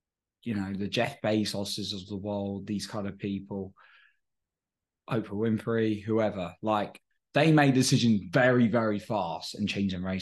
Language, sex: English, male